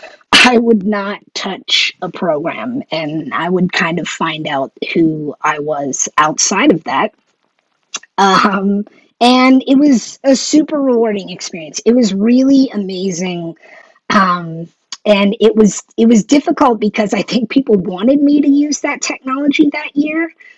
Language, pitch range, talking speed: English, 175-245 Hz, 145 wpm